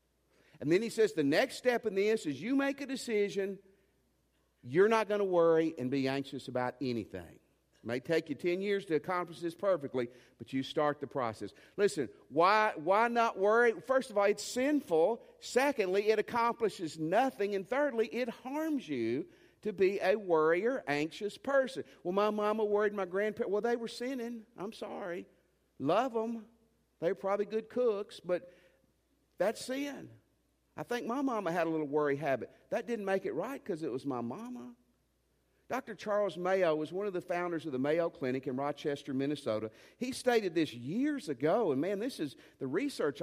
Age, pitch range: 50-69, 145-230 Hz